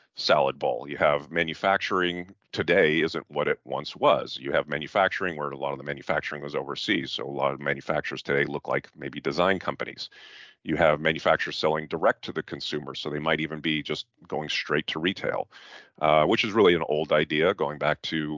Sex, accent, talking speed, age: male, American, 200 wpm, 40-59